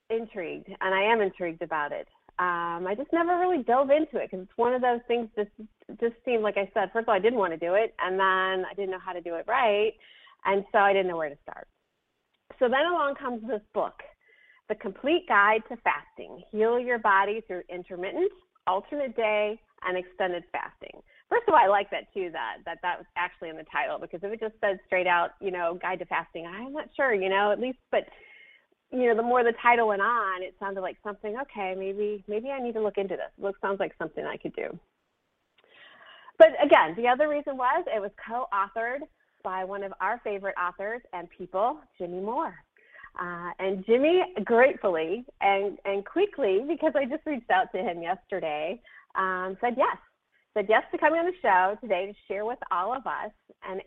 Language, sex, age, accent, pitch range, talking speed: English, female, 30-49, American, 190-250 Hz, 210 wpm